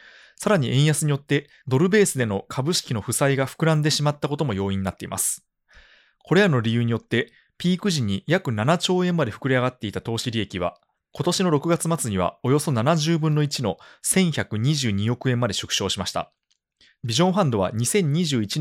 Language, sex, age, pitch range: Japanese, male, 20-39, 105-160 Hz